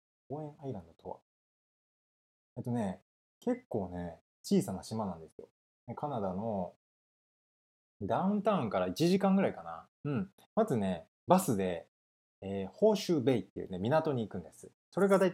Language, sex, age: Japanese, male, 20-39